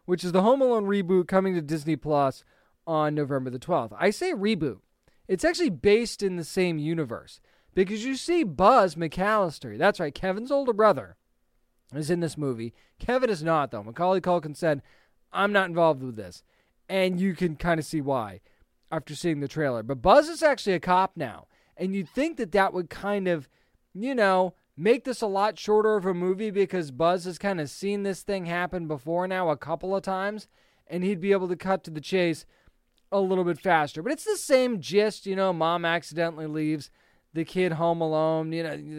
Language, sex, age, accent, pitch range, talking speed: English, male, 20-39, American, 160-200 Hz, 200 wpm